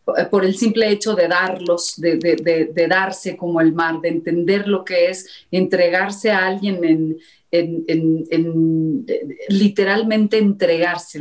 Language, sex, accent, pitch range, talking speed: Spanish, female, Mexican, 185-235 Hz, 130 wpm